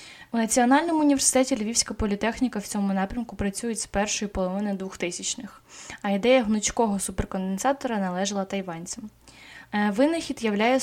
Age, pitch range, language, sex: 20-39, 190-235 Hz, Ukrainian, female